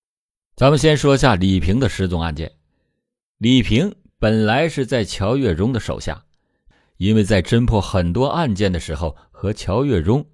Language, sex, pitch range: Chinese, male, 90-130 Hz